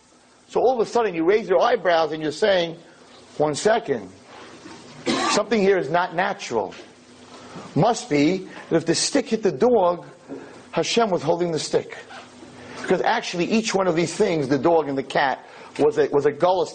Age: 30-49